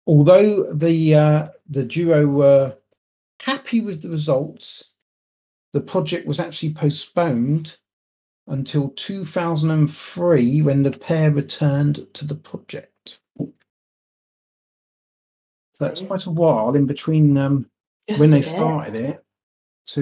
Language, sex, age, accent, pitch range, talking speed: English, male, 40-59, British, 135-165 Hz, 120 wpm